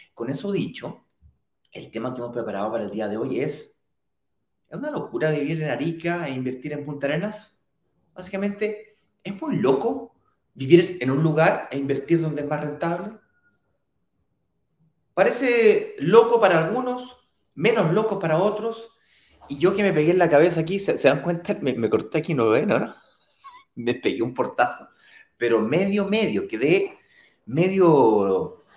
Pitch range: 130-205 Hz